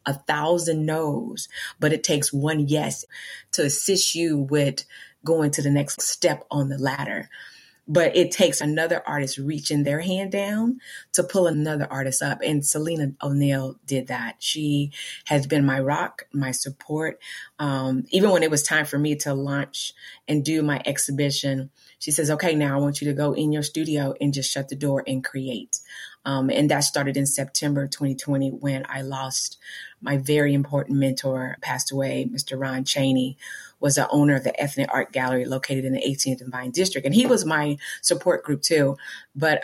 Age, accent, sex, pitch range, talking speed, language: 30-49, American, female, 135-150 Hz, 185 wpm, English